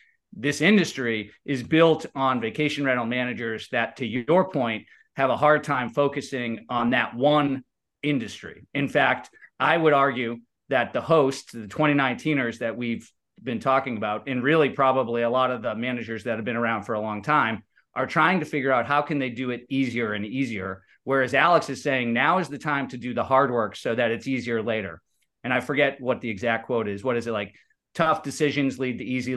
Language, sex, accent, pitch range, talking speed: English, male, American, 115-145 Hz, 205 wpm